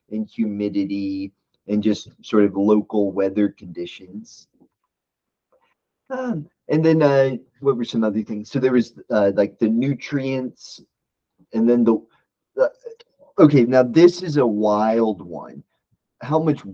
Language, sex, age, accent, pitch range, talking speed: English, male, 30-49, American, 105-140 Hz, 135 wpm